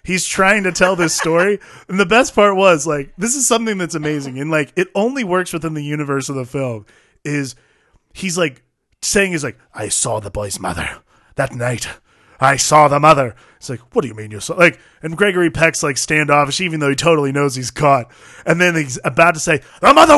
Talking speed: 220 wpm